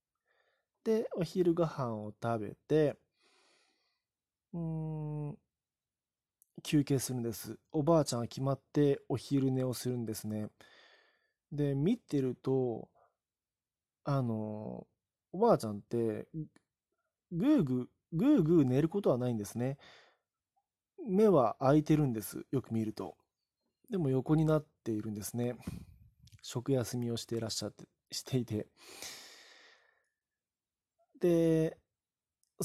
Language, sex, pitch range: Japanese, male, 110-160 Hz